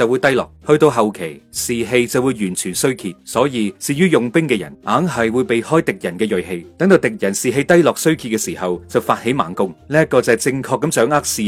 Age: 30-49